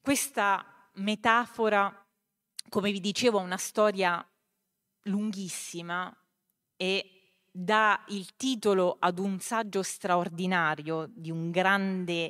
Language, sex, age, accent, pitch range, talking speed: Italian, female, 30-49, native, 165-195 Hz, 100 wpm